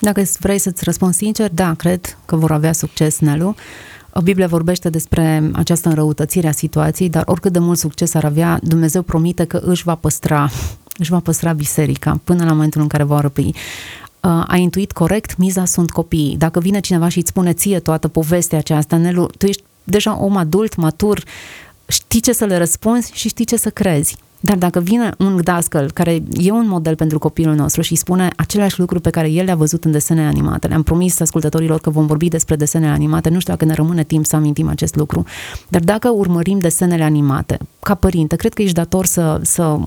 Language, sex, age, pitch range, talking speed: Romanian, female, 30-49, 160-190 Hz, 200 wpm